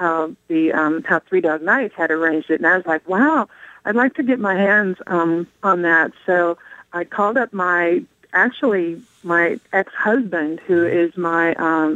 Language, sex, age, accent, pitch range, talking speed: English, female, 40-59, American, 165-210 Hz, 180 wpm